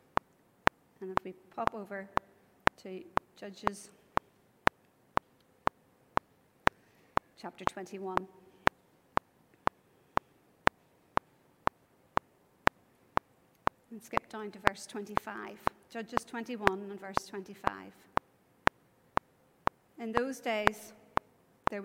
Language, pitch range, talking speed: English, 195-210 Hz, 65 wpm